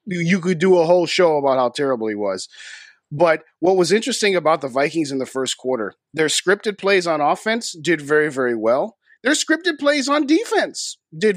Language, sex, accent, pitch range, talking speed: English, male, American, 145-190 Hz, 195 wpm